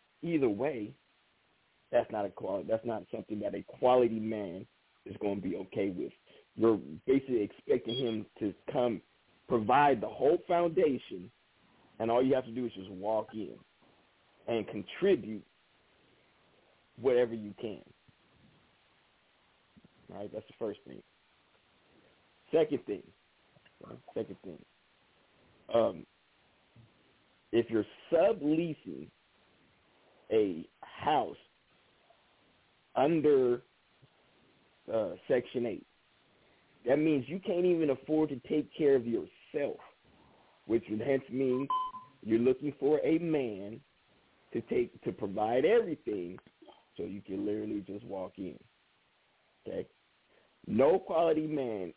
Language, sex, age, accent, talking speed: English, male, 40-59, American, 115 wpm